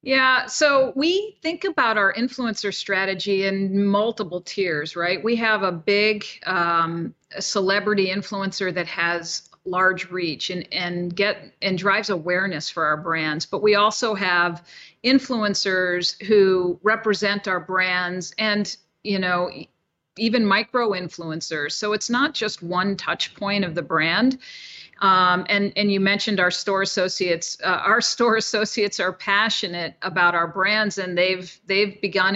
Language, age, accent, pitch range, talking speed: English, 50-69, American, 180-215 Hz, 145 wpm